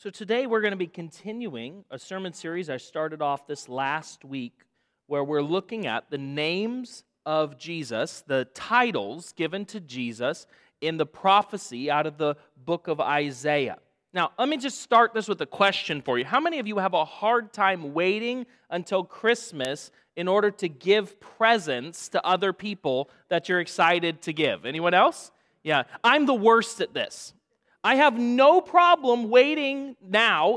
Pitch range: 170-255 Hz